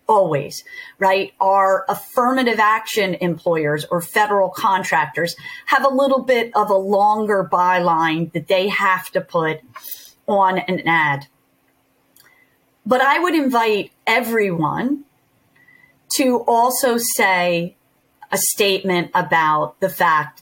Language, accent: English, American